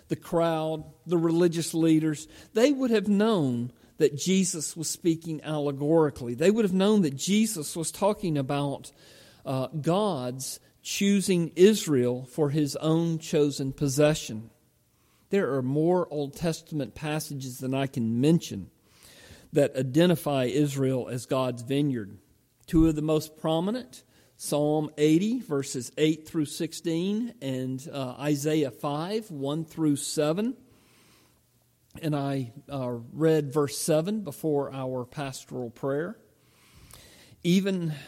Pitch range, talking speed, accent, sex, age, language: 140-185 Hz, 120 wpm, American, male, 50-69, English